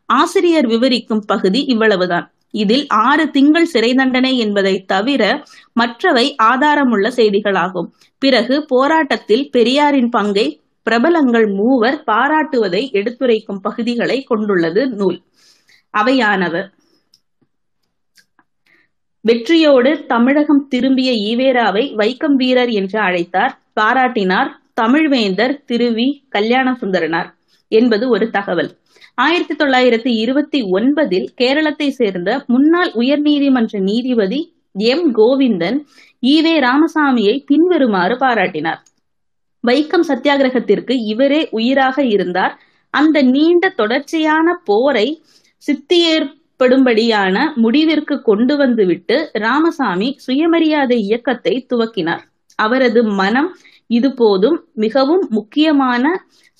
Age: 20-39